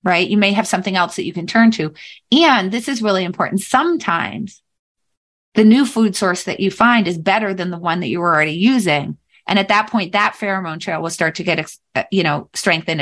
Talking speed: 220 wpm